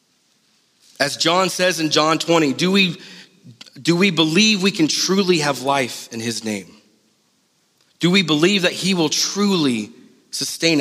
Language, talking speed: English, 150 wpm